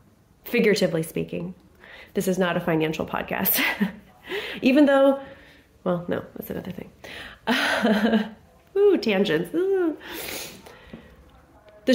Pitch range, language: 185-265 Hz, English